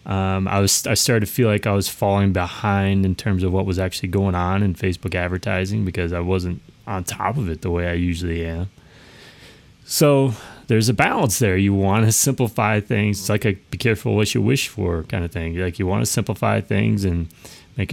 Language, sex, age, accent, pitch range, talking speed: English, male, 30-49, American, 95-115 Hz, 220 wpm